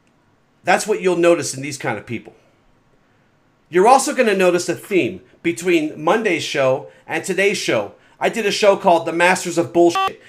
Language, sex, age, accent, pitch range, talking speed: English, male, 40-59, American, 145-210 Hz, 180 wpm